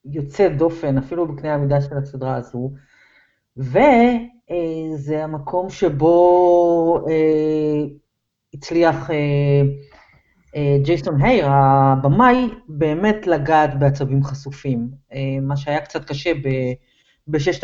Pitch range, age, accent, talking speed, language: 145-190 Hz, 40-59, native, 100 wpm, Hebrew